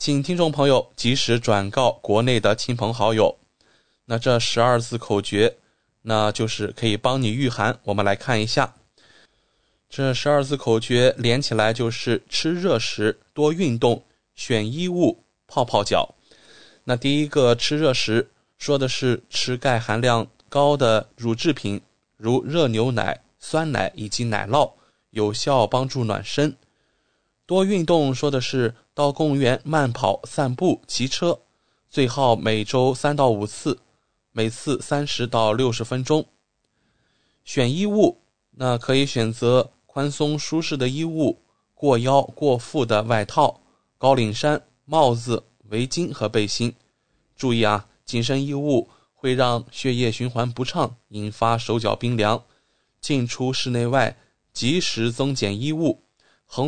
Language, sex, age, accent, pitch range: English, male, 20-39, Chinese, 115-140 Hz